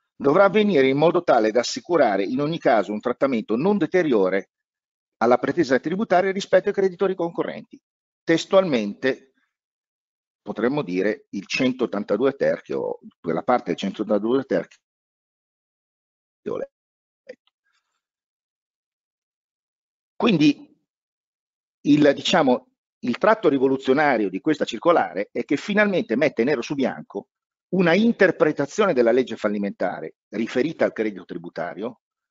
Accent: native